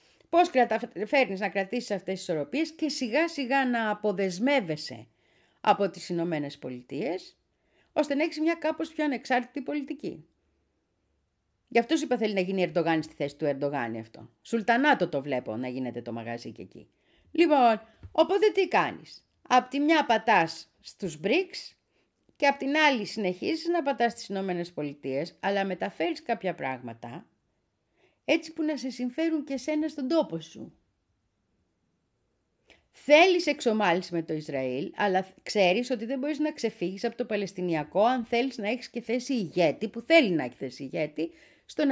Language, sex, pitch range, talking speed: Greek, female, 170-275 Hz, 155 wpm